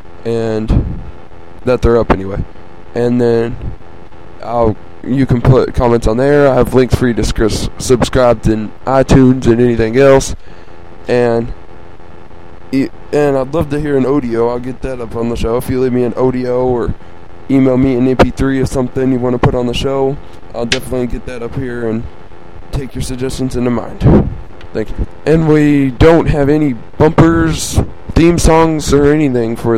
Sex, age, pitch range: male, 20-39, 110-135 Hz